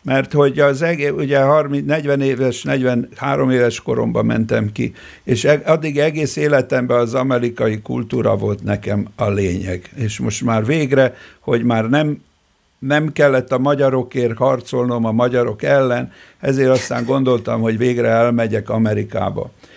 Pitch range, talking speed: 115-145 Hz, 140 wpm